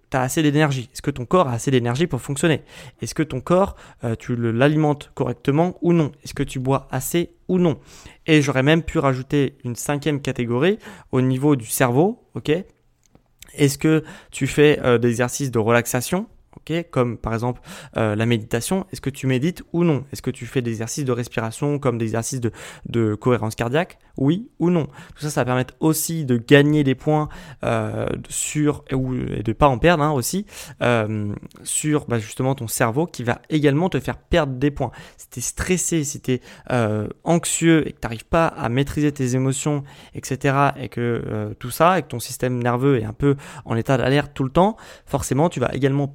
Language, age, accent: French, 20-39, French